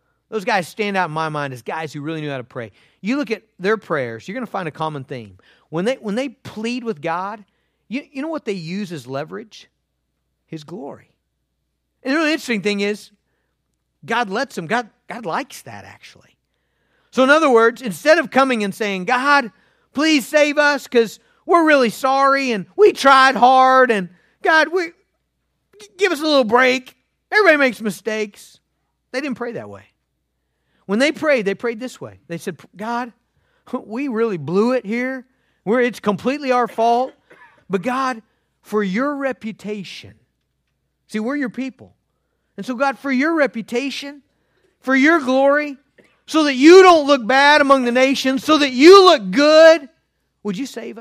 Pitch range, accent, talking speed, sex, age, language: 190-275 Hz, American, 175 wpm, male, 50-69, English